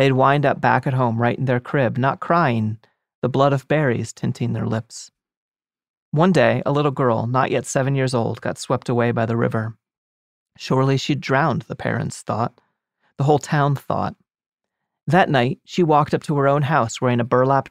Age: 30-49